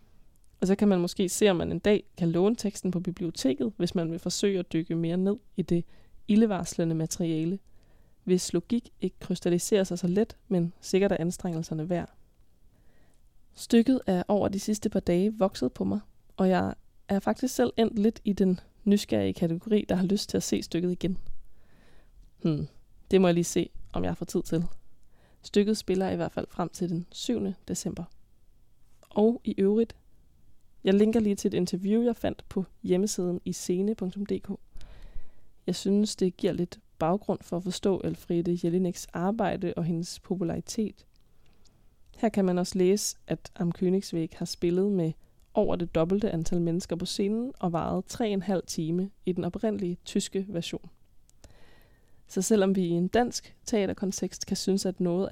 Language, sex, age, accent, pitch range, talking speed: Danish, female, 20-39, native, 170-200 Hz, 170 wpm